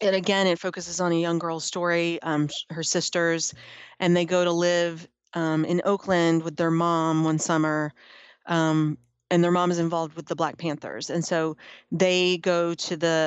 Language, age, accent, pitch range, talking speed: English, 30-49, American, 165-190 Hz, 185 wpm